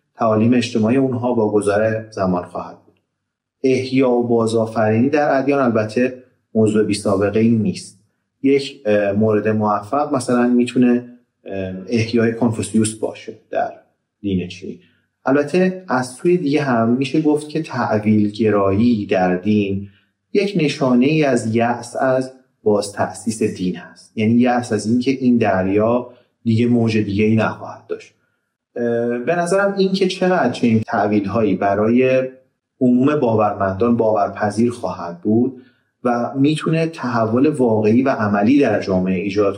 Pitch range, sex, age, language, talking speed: 105-135 Hz, male, 30-49, Persian, 125 wpm